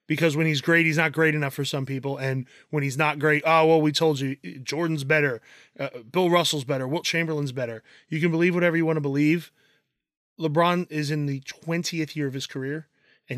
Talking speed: 215 wpm